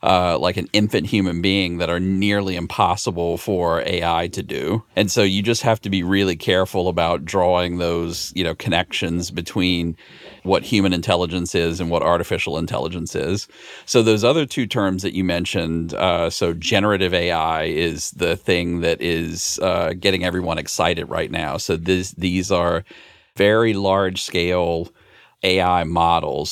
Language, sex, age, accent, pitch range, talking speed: English, male, 40-59, American, 85-95 Hz, 155 wpm